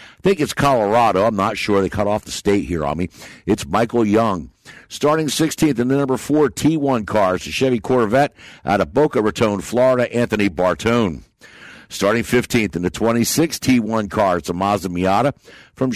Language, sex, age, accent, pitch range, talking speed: English, male, 60-79, American, 100-130 Hz, 190 wpm